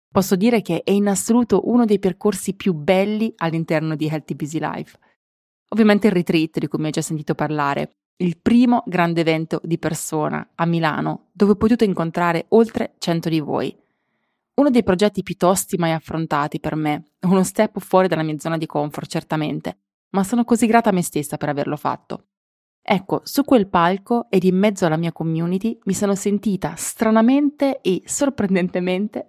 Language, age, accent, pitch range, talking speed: Italian, 20-39, native, 160-205 Hz, 175 wpm